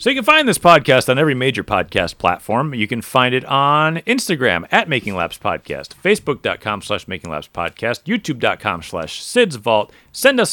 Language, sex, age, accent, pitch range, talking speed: English, male, 40-59, American, 105-150 Hz, 155 wpm